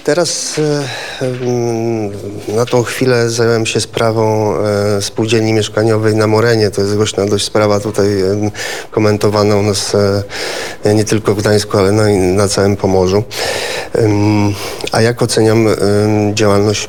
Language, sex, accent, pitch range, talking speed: Polish, male, native, 100-115 Hz, 115 wpm